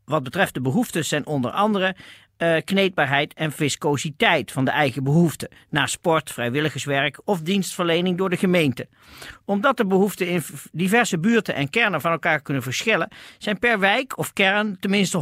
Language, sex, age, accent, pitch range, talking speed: Dutch, male, 40-59, Dutch, 150-210 Hz, 160 wpm